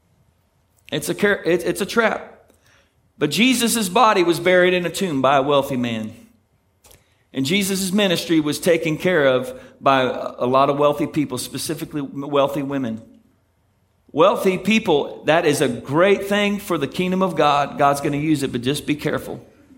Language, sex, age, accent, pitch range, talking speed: English, male, 40-59, American, 130-185 Hz, 165 wpm